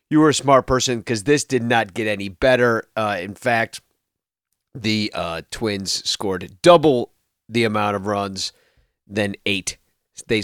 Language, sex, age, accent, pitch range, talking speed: English, male, 40-59, American, 110-155 Hz, 155 wpm